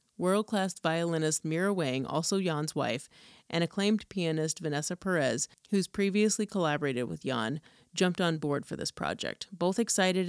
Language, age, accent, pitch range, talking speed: English, 30-49, American, 150-185 Hz, 145 wpm